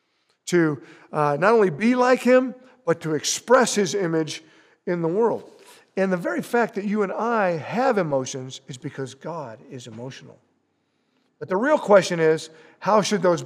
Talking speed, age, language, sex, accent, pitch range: 170 wpm, 50-69, English, male, American, 160-225 Hz